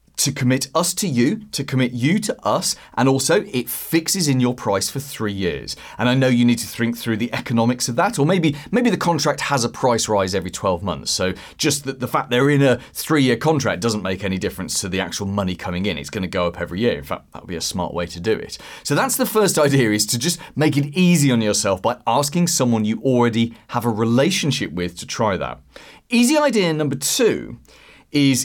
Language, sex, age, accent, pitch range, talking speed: English, male, 30-49, British, 115-160 Hz, 235 wpm